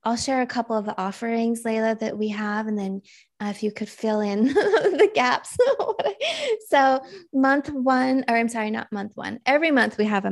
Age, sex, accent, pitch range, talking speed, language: 20-39, female, American, 195-245 Hz, 200 wpm, English